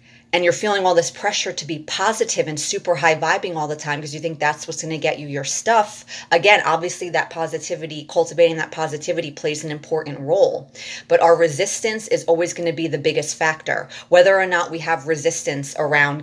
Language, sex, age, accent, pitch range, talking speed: English, female, 30-49, American, 150-170 Hz, 205 wpm